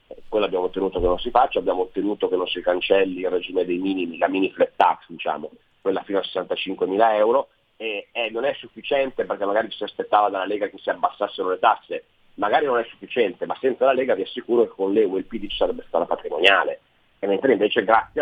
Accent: native